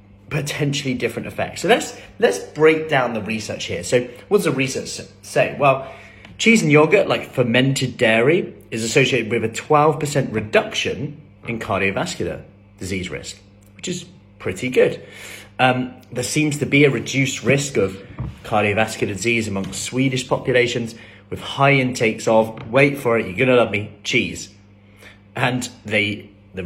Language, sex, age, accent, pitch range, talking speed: English, male, 30-49, British, 100-130 Hz, 155 wpm